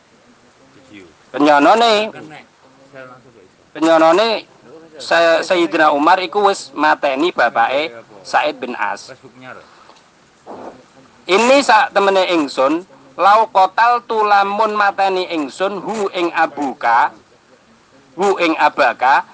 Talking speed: 90 wpm